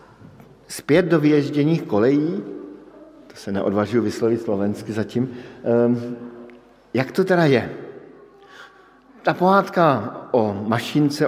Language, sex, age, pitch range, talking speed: Slovak, male, 50-69, 115-140 Hz, 95 wpm